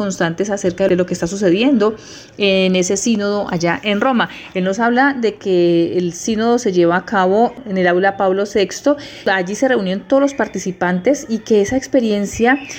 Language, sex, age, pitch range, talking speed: Spanish, female, 30-49, 190-235 Hz, 185 wpm